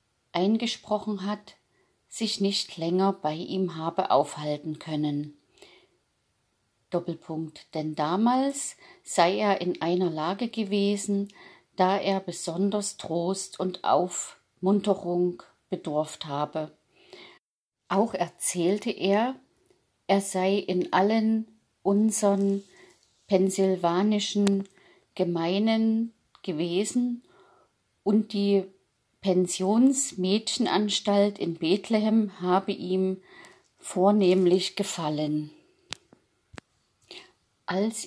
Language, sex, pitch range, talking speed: German, female, 175-205 Hz, 75 wpm